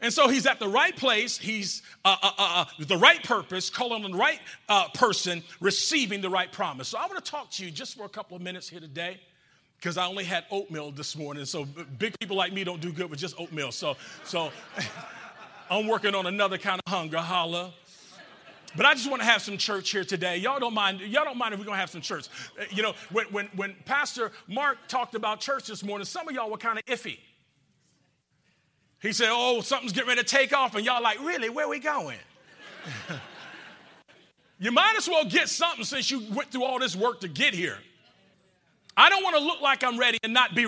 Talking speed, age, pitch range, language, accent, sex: 225 wpm, 40-59, 175-245 Hz, English, American, male